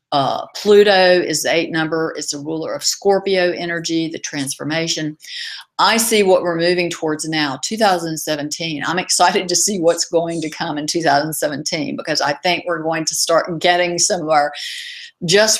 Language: English